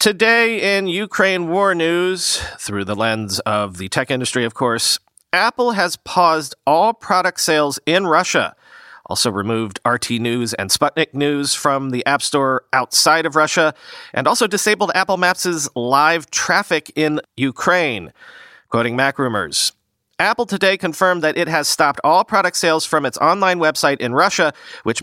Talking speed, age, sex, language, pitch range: 155 wpm, 40-59, male, English, 130-175 Hz